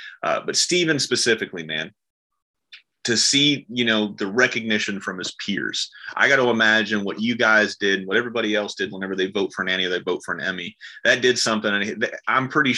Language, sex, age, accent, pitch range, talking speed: English, male, 30-49, American, 100-125 Hz, 200 wpm